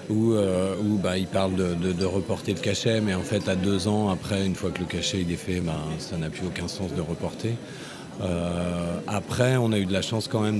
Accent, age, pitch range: French, 40-59, 95-120 Hz